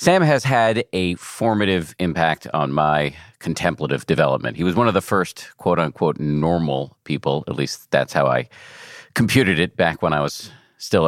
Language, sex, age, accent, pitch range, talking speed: English, male, 40-59, American, 80-110 Hz, 170 wpm